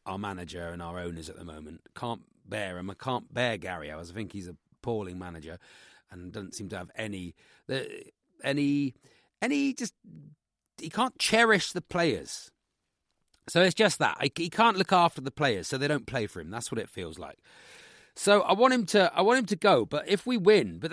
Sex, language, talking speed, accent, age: male, English, 205 wpm, British, 40-59